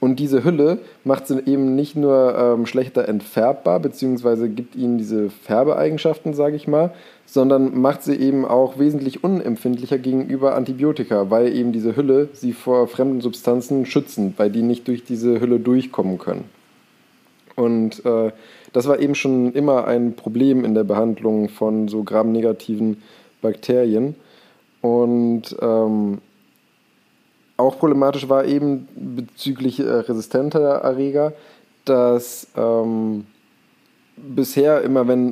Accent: German